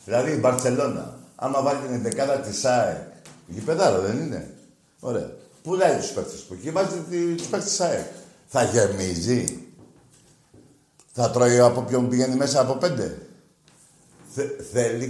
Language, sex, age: Greek, male, 60-79